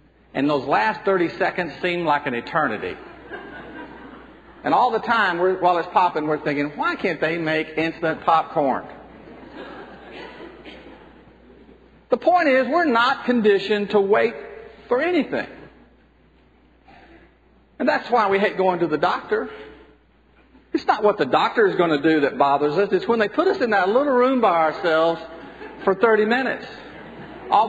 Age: 50-69